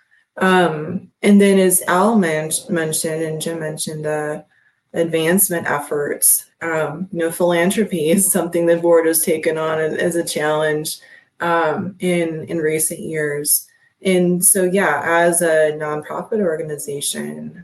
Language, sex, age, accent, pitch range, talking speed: English, female, 20-39, American, 150-190 Hz, 140 wpm